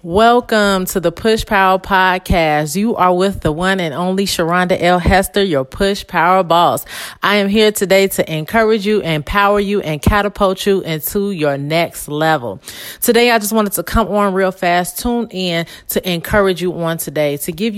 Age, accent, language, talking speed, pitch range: 30-49, American, English, 180 wpm, 160-205 Hz